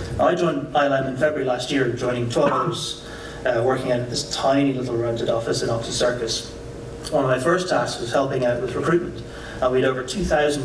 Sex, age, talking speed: male, 30-49, 195 wpm